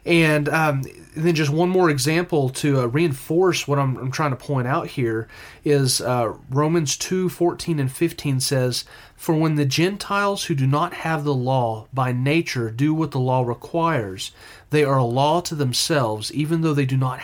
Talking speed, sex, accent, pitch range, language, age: 190 wpm, male, American, 130-165 Hz, English, 30-49